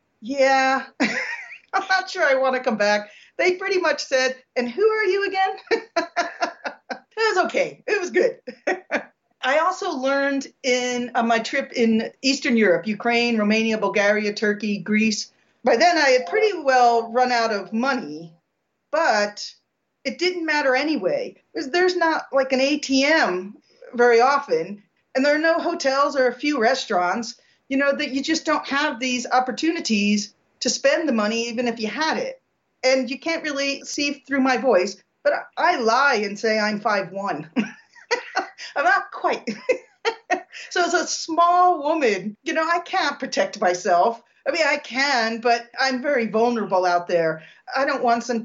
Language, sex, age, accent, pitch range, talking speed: English, female, 40-59, American, 225-305 Hz, 160 wpm